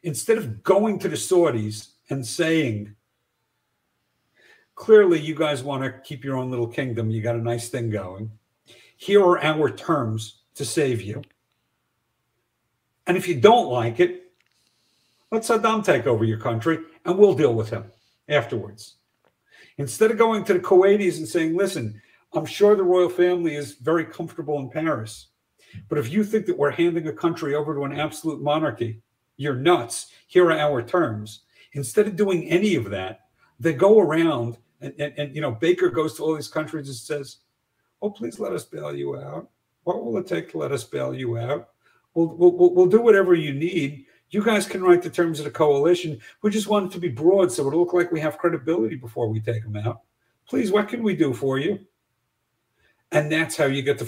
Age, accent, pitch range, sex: 50-69, American, 120-180 Hz, male